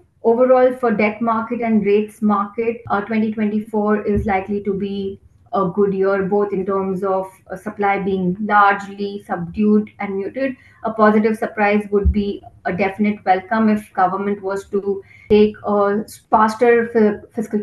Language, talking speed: English, 145 wpm